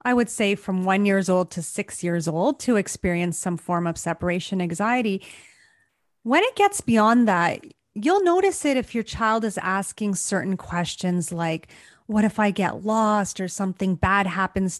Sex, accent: female, American